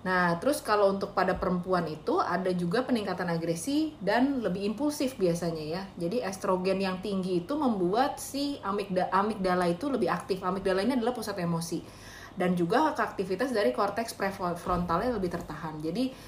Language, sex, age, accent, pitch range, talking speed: Indonesian, female, 30-49, native, 175-220 Hz, 155 wpm